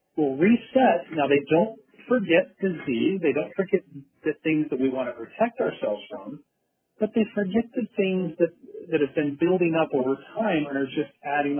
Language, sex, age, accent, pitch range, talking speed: English, male, 40-59, American, 140-190 Hz, 185 wpm